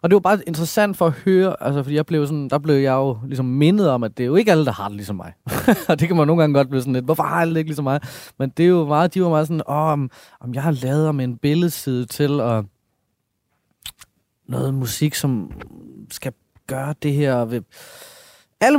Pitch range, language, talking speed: 125-165 Hz, Danish, 230 wpm